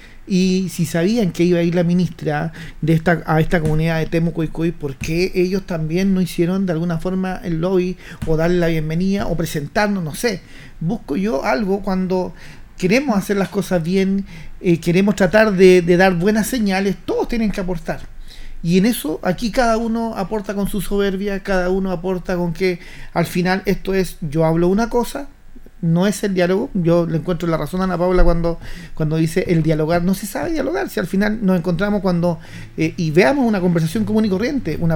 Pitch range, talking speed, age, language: 165-200 Hz, 200 wpm, 40-59, Spanish